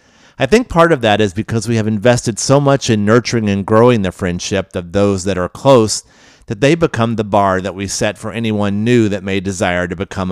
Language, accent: English, American